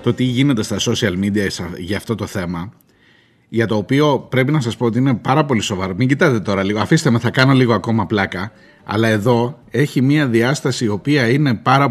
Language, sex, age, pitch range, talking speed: Greek, male, 30-49, 110-145 Hz, 210 wpm